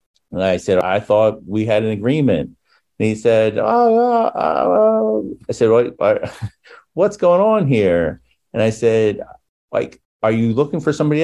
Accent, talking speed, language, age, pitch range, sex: American, 155 wpm, English, 50-69, 90-120 Hz, male